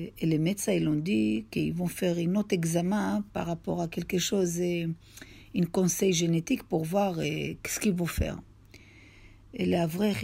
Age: 50-69